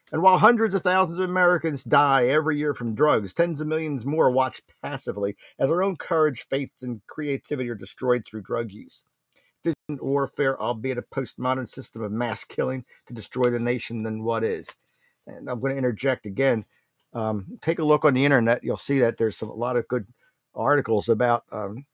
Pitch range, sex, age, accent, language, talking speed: 120-155 Hz, male, 50-69, American, English, 195 wpm